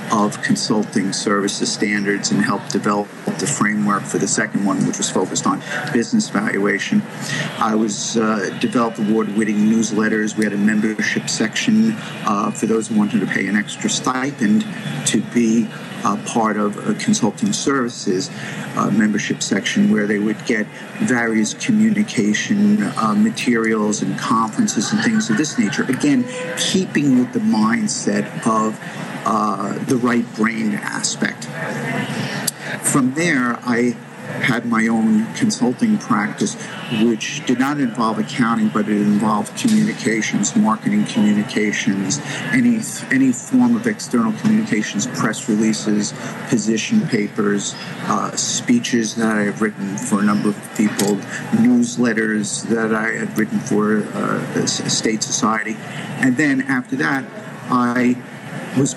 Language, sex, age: English, male, 50-69